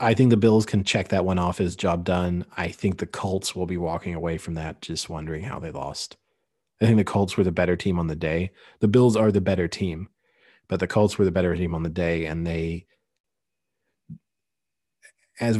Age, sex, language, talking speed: 30-49, male, English, 220 wpm